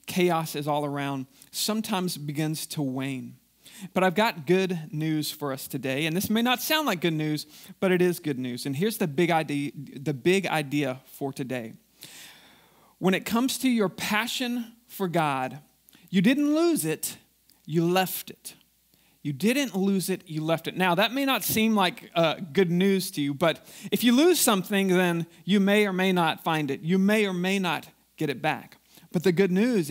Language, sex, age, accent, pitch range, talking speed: English, male, 40-59, American, 160-210 Hz, 195 wpm